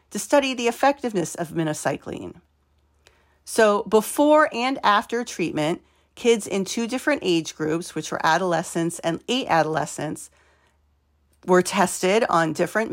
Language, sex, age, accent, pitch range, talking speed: English, female, 40-59, American, 165-240 Hz, 125 wpm